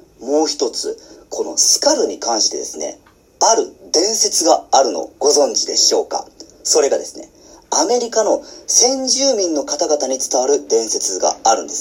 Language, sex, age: Japanese, male, 40-59